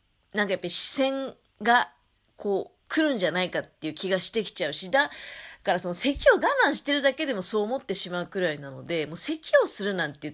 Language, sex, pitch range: Japanese, female, 170-275 Hz